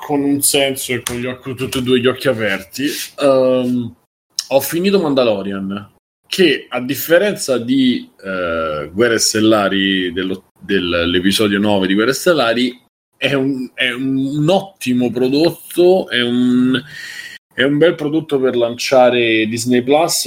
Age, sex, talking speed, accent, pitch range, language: 30-49, male, 140 wpm, native, 110-140 Hz, Italian